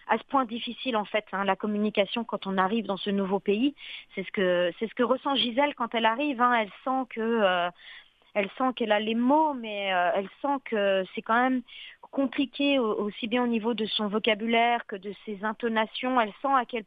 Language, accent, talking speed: French, French, 220 wpm